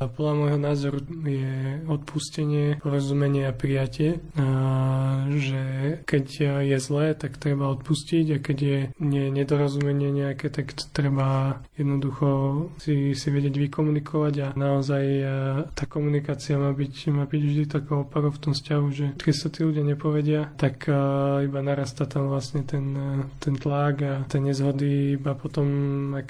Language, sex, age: Slovak, male, 20-39